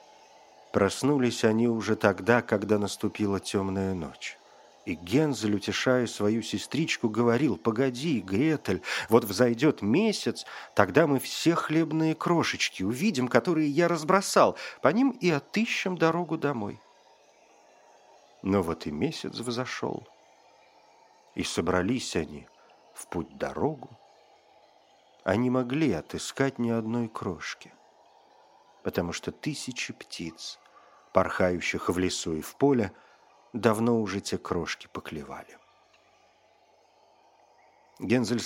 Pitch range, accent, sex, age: 100-135 Hz, native, male, 50-69